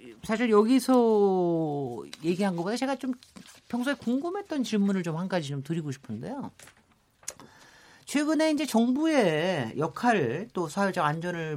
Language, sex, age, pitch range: Korean, male, 40-59, 155-245 Hz